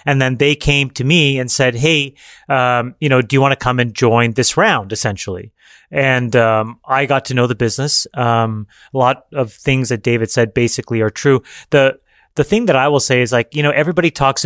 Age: 30-49